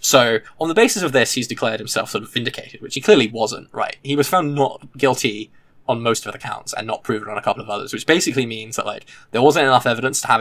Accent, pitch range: British, 115-145 Hz